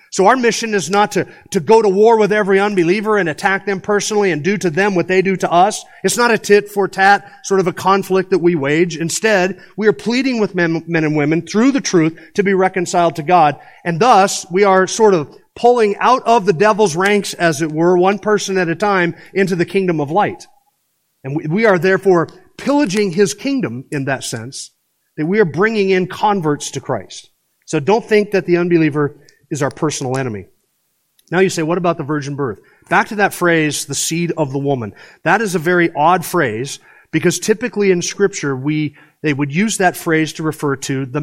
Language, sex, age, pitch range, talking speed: English, male, 40-59, 155-200 Hz, 210 wpm